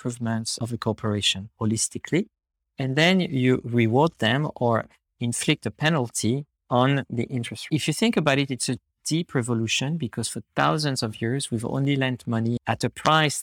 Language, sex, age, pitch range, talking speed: English, male, 50-69, 115-140 Hz, 175 wpm